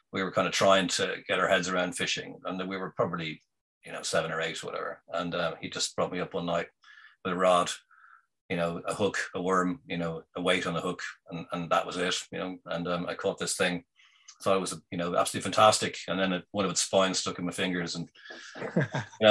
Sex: male